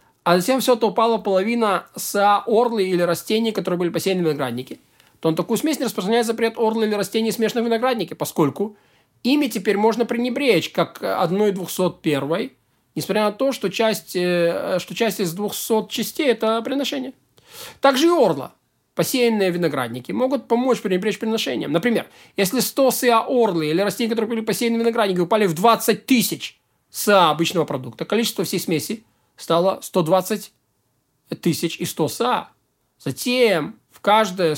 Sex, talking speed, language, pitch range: male, 150 wpm, Russian, 170-230 Hz